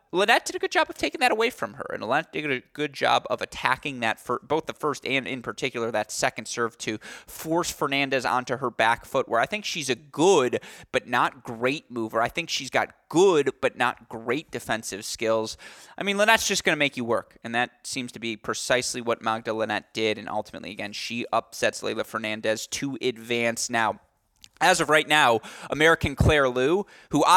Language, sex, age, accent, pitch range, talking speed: English, male, 20-39, American, 110-155 Hz, 205 wpm